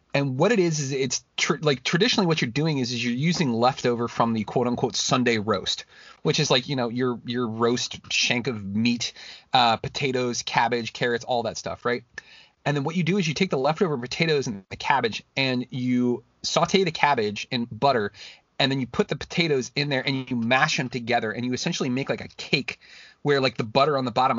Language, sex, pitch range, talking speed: English, male, 120-145 Hz, 220 wpm